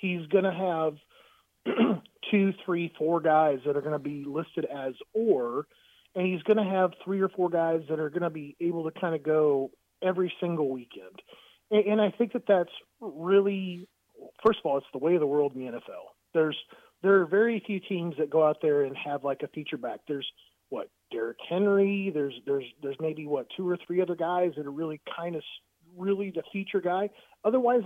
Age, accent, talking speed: 40-59, American, 205 wpm